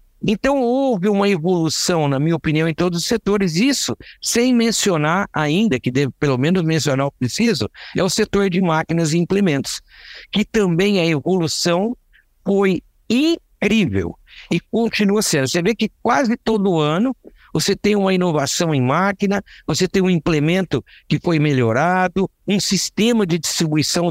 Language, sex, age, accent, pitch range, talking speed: Portuguese, male, 60-79, Brazilian, 145-195 Hz, 150 wpm